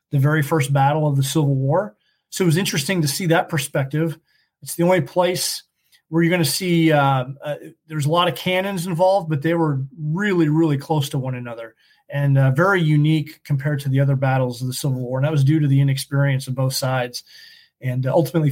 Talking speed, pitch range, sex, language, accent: 220 wpm, 135-170 Hz, male, English, American